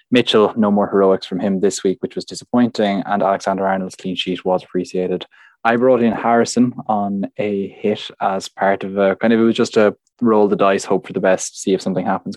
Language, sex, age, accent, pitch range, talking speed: English, male, 20-39, Irish, 95-115 Hz, 220 wpm